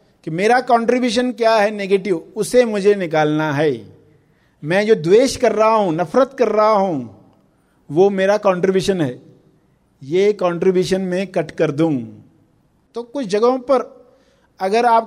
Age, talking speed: 50-69, 145 wpm